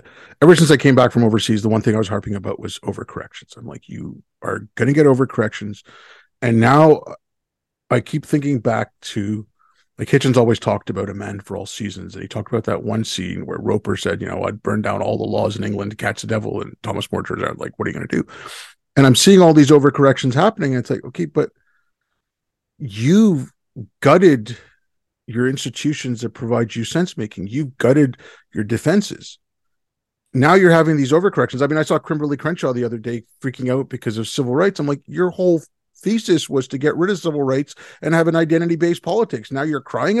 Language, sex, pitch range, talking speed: English, male, 115-160 Hz, 210 wpm